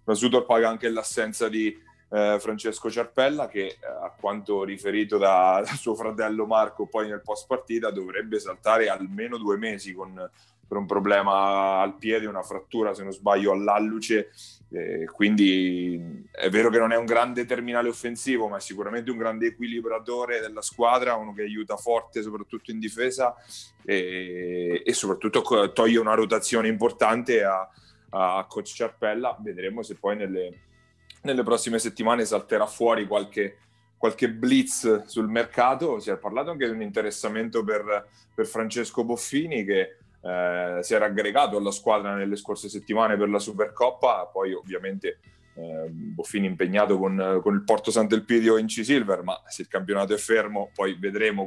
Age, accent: 30-49, native